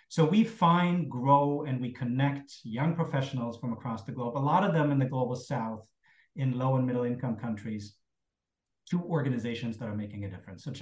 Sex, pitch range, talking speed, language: male, 120-155 Hz, 195 wpm, English